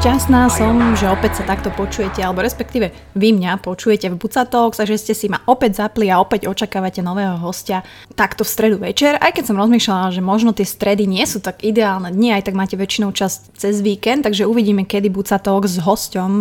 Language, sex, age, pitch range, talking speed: Slovak, female, 20-39, 195-225 Hz, 200 wpm